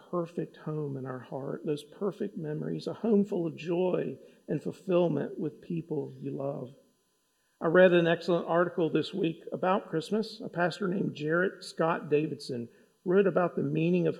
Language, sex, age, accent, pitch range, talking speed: English, male, 50-69, American, 145-185 Hz, 165 wpm